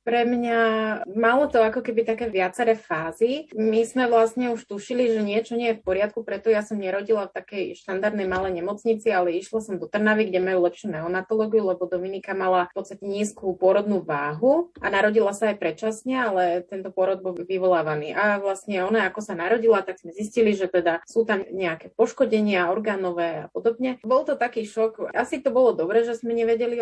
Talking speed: 190 wpm